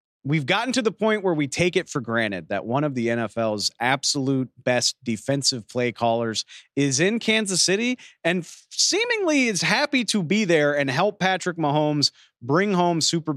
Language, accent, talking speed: English, American, 175 wpm